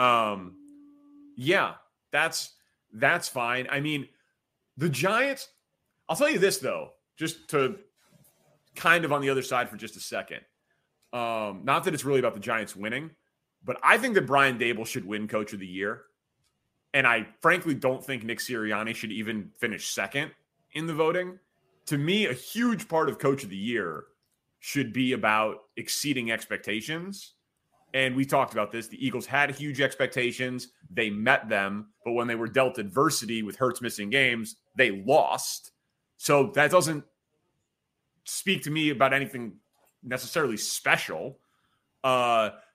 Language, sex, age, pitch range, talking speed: English, male, 30-49, 120-155 Hz, 155 wpm